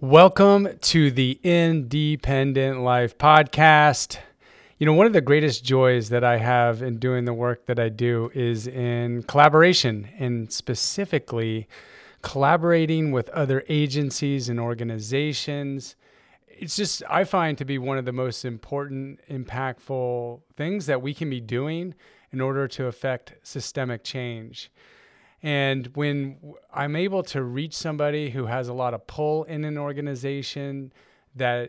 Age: 30-49